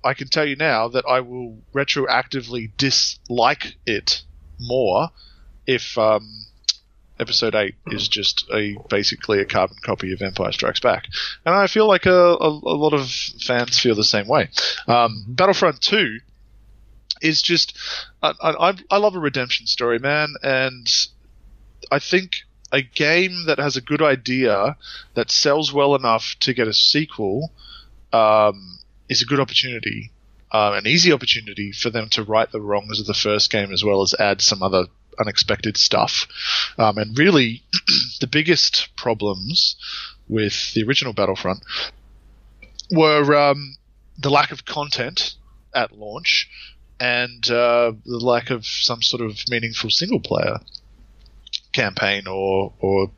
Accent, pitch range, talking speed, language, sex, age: Australian, 105-145 Hz, 145 wpm, English, male, 20-39